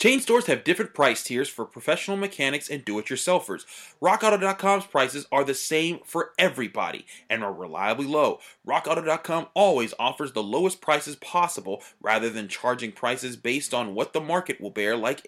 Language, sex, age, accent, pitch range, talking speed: English, male, 30-49, American, 135-190 Hz, 160 wpm